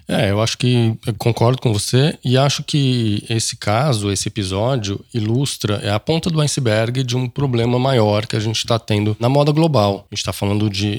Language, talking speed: Portuguese, 205 wpm